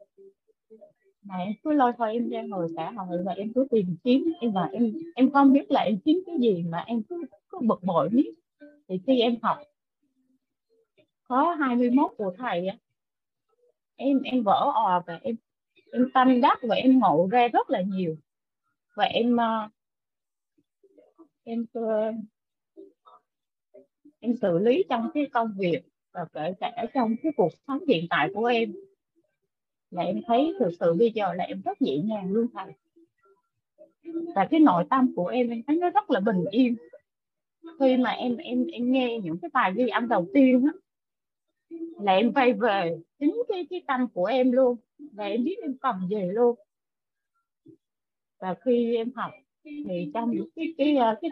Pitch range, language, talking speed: 205-295 Hz, Vietnamese, 170 wpm